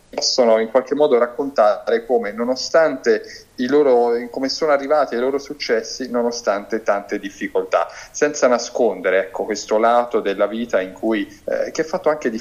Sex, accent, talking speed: male, native, 160 wpm